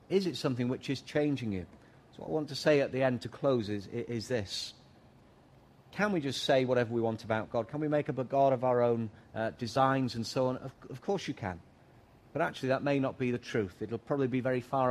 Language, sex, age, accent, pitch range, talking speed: English, male, 40-59, British, 115-145 Hz, 255 wpm